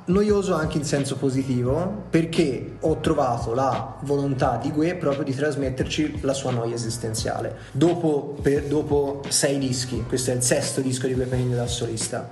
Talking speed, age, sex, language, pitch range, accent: 160 wpm, 20-39, male, Italian, 125-150 Hz, native